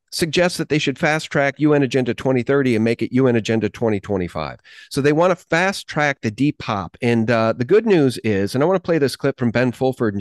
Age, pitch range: 40-59, 120-180 Hz